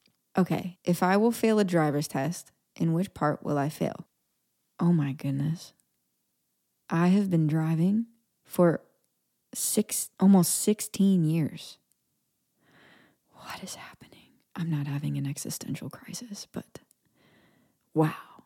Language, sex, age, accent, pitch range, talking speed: English, female, 20-39, American, 150-185 Hz, 120 wpm